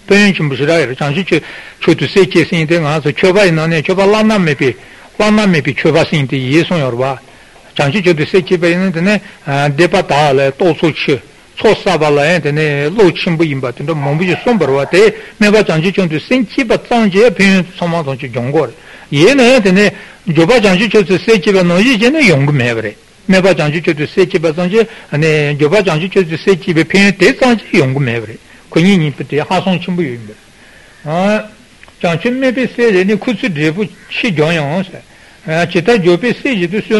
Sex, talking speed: male, 60 wpm